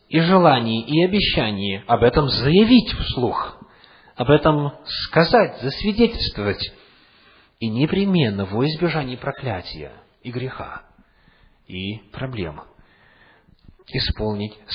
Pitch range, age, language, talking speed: 115-185 Hz, 40-59, English, 90 wpm